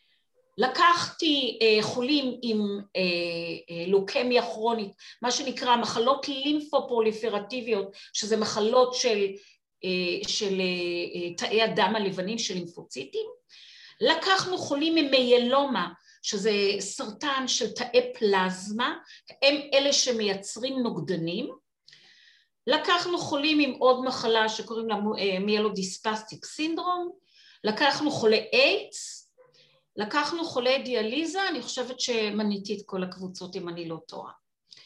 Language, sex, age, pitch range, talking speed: Hebrew, female, 40-59, 215-290 Hz, 105 wpm